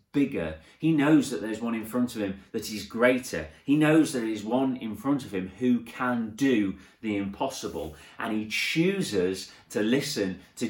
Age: 30-49